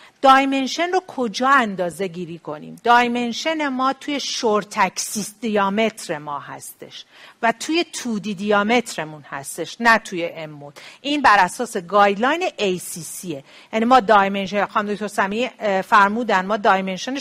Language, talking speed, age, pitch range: Persian, 125 wpm, 50-69, 195-260 Hz